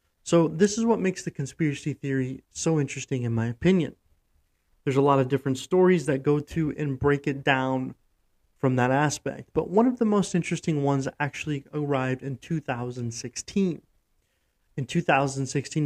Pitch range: 130-155 Hz